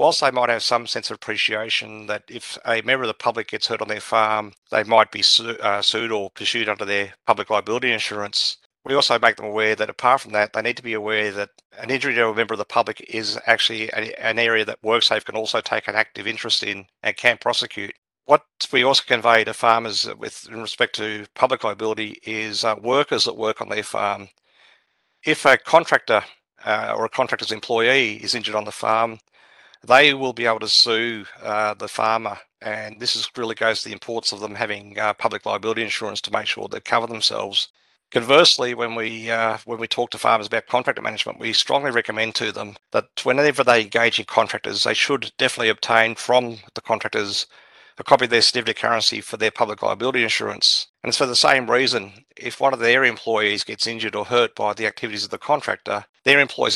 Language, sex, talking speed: English, male, 210 wpm